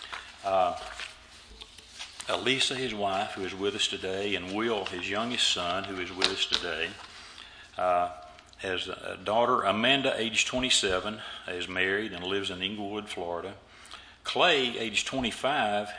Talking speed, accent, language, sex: 135 wpm, American, English, male